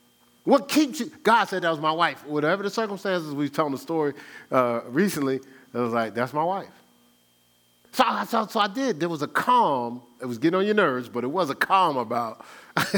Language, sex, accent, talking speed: English, male, American, 210 wpm